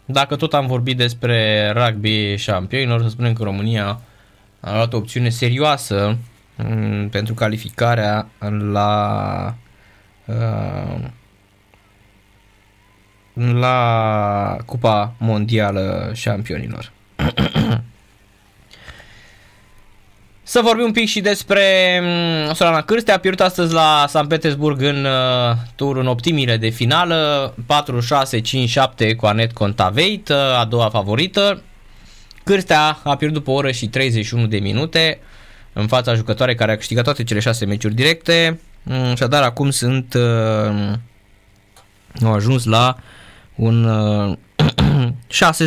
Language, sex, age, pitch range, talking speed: Romanian, male, 20-39, 105-135 Hz, 110 wpm